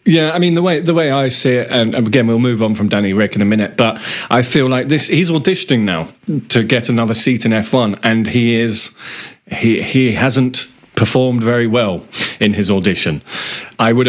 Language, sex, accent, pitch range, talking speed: English, male, British, 110-145 Hz, 215 wpm